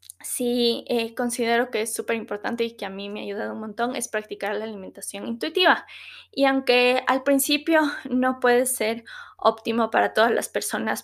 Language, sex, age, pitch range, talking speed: Spanish, female, 20-39, 210-240 Hz, 180 wpm